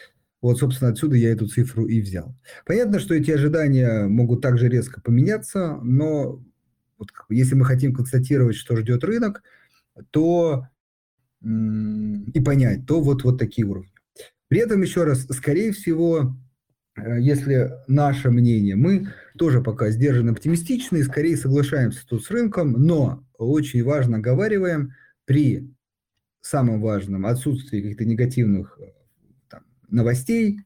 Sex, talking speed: male, 125 wpm